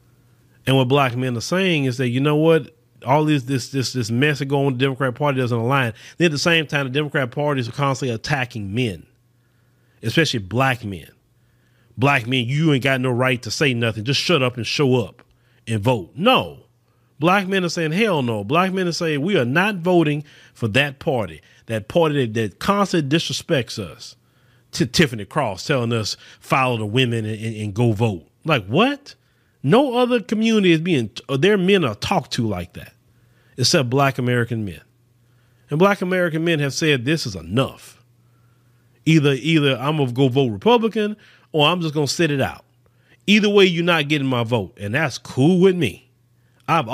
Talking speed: 195 wpm